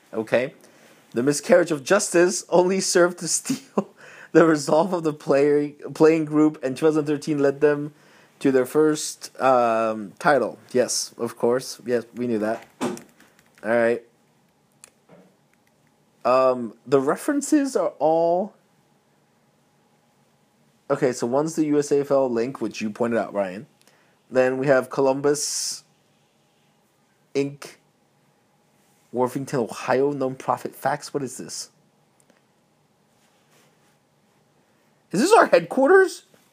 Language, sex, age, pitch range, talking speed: English, male, 30-49, 140-190 Hz, 110 wpm